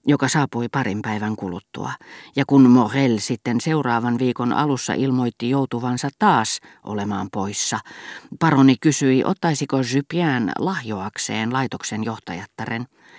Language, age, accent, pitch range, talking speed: Finnish, 40-59, native, 115-145 Hz, 110 wpm